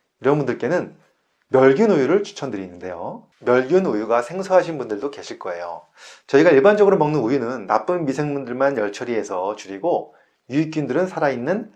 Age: 30-49